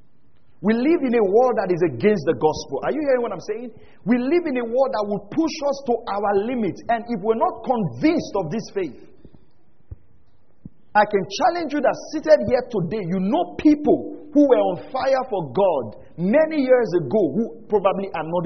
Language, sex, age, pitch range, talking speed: English, male, 40-59, 175-270 Hz, 195 wpm